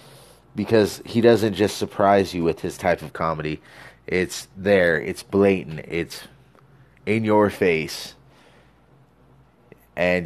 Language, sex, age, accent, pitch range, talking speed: English, male, 30-49, American, 85-100 Hz, 115 wpm